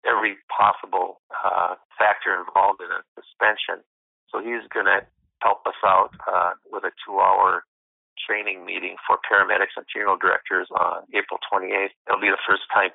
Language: English